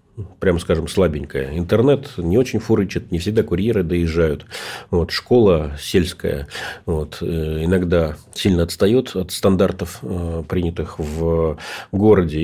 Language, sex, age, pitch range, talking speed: Russian, male, 40-59, 85-105 Hz, 110 wpm